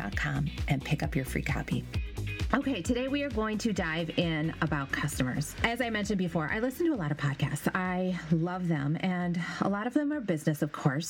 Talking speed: 210 wpm